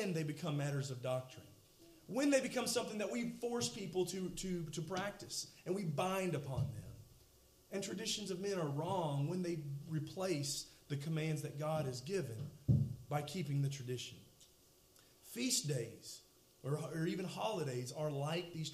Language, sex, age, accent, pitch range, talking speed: English, male, 40-59, American, 135-195 Hz, 160 wpm